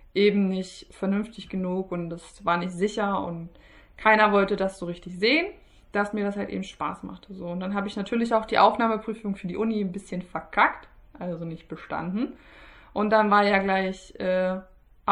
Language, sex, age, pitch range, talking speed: German, female, 20-39, 185-215 Hz, 185 wpm